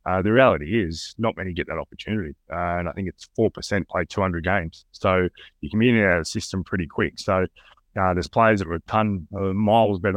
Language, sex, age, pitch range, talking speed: English, male, 20-39, 85-105 Hz, 225 wpm